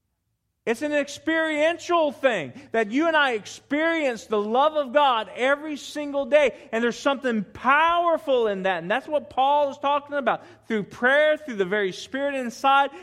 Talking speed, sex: 165 wpm, male